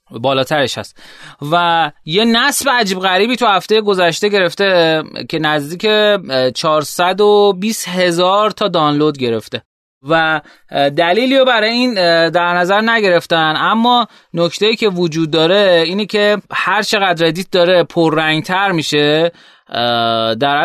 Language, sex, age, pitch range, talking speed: Persian, male, 20-39, 150-195 Hz, 115 wpm